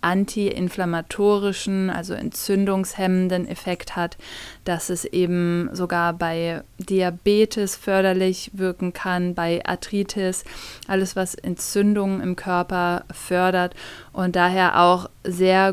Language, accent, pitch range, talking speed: German, German, 180-205 Hz, 100 wpm